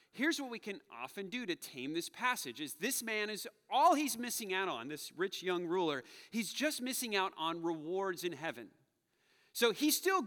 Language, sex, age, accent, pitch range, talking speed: English, male, 30-49, American, 135-215 Hz, 200 wpm